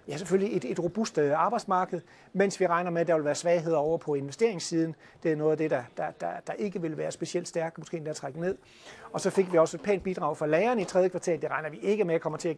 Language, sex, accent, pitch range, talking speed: Danish, male, native, 145-180 Hz, 280 wpm